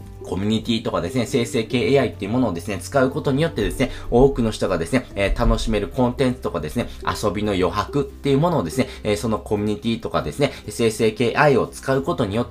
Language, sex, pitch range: Japanese, male, 105-140 Hz